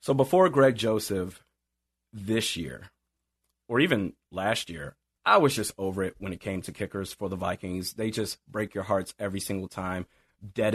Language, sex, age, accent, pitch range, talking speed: English, male, 30-49, American, 105-170 Hz, 180 wpm